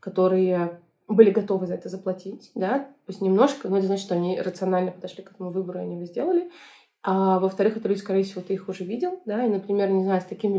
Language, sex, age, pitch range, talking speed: Russian, female, 20-39, 185-220 Hz, 225 wpm